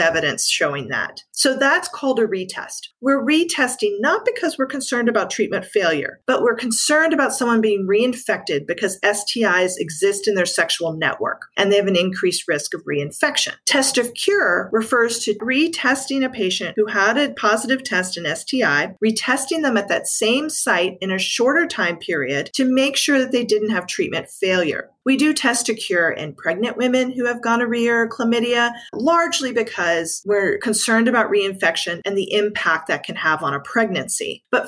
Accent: American